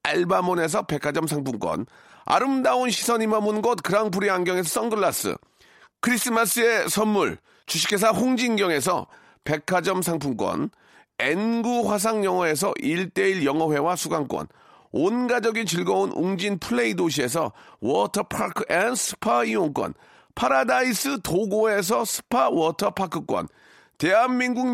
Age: 40-59